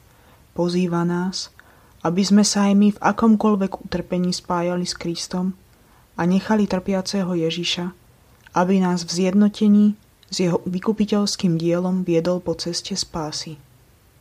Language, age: Slovak, 20-39